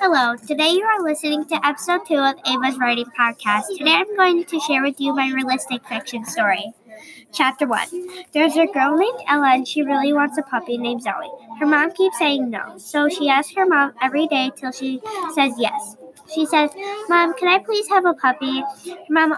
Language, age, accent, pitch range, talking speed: English, 10-29, American, 260-325 Hz, 200 wpm